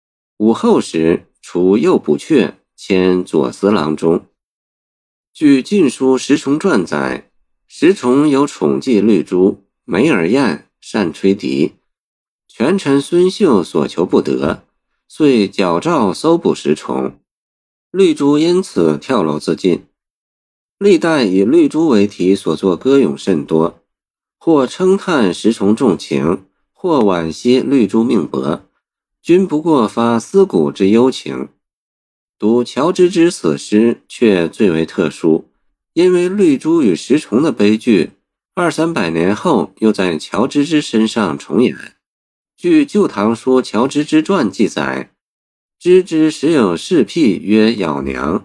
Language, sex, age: Chinese, male, 50-69